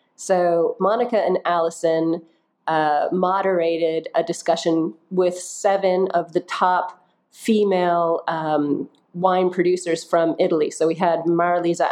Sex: female